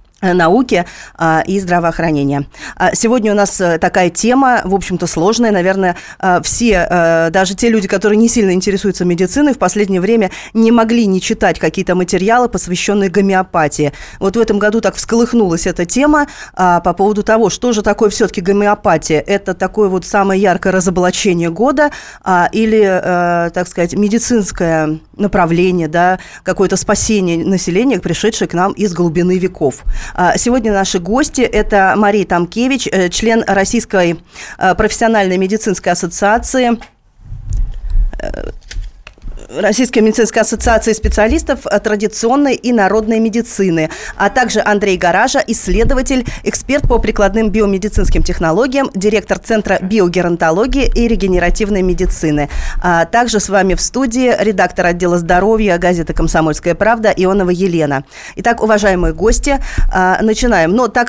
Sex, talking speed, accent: female, 125 wpm, native